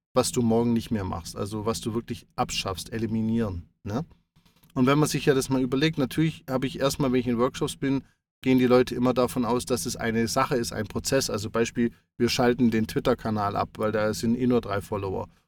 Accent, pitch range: German, 115-130 Hz